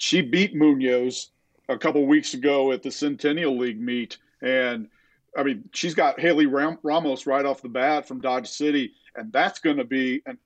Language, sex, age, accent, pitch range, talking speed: English, male, 40-59, American, 135-160 Hz, 185 wpm